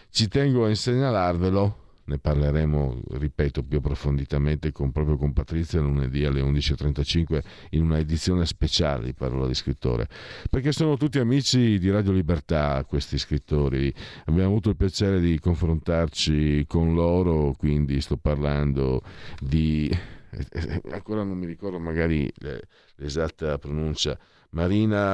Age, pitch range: 50-69, 75-100 Hz